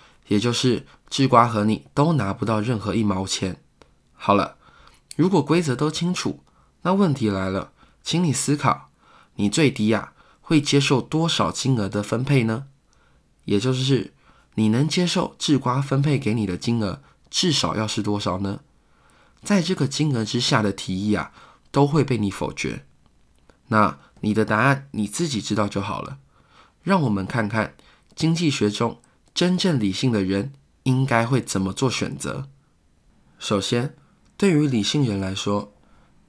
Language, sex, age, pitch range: Chinese, male, 20-39, 100-145 Hz